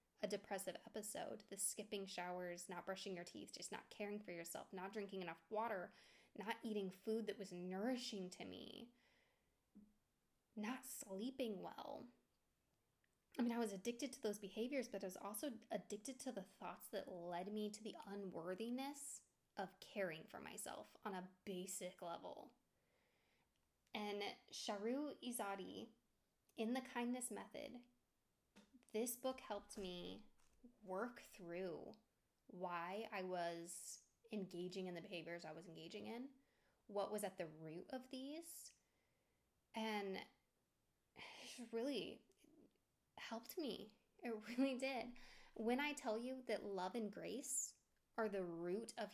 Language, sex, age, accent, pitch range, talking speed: English, female, 10-29, American, 190-240 Hz, 135 wpm